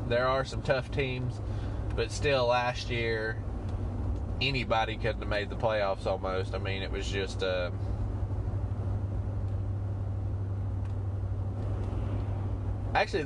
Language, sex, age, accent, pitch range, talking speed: English, male, 20-39, American, 100-115 Hz, 105 wpm